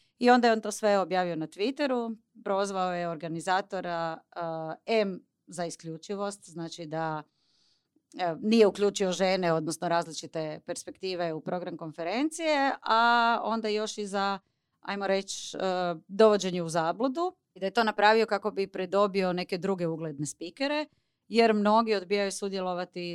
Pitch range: 160-210 Hz